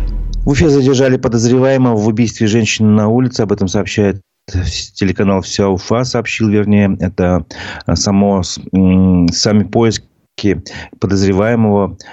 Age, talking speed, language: 30-49, 110 wpm, Russian